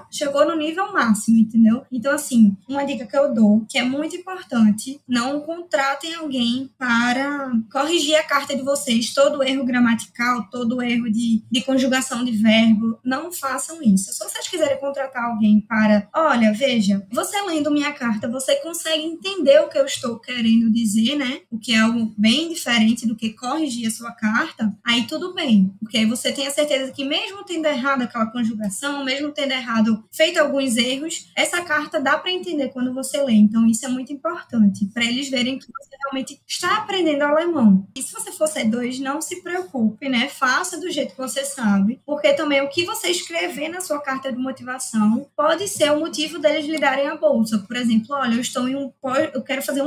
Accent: Brazilian